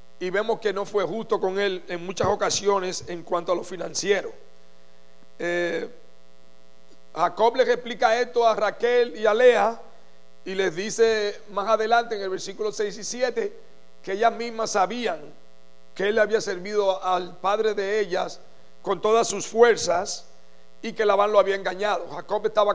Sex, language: male, English